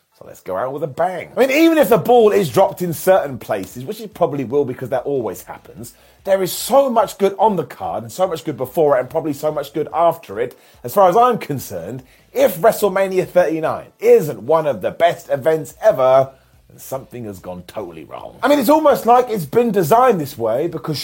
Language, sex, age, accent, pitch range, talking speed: English, male, 30-49, British, 130-205 Hz, 225 wpm